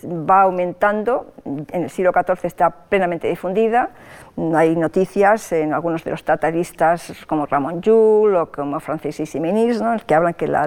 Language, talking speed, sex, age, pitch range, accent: Spanish, 165 wpm, female, 50-69, 170-220 Hz, Spanish